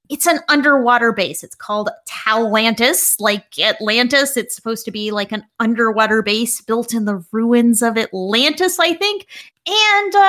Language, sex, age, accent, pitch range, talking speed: English, female, 30-49, American, 215-290 Hz, 150 wpm